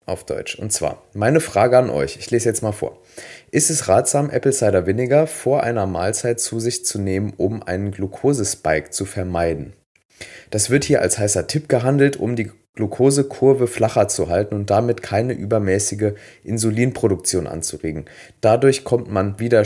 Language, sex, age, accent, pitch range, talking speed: German, male, 30-49, German, 95-125 Hz, 165 wpm